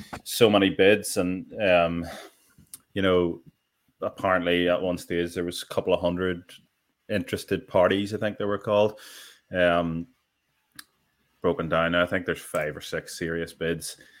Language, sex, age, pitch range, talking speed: English, male, 20-39, 85-95 Hz, 150 wpm